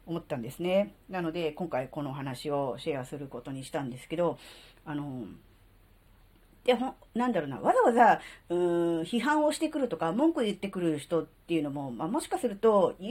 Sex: female